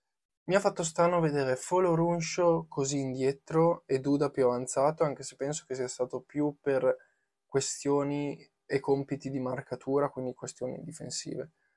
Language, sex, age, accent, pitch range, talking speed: Italian, male, 20-39, native, 130-150 Hz, 150 wpm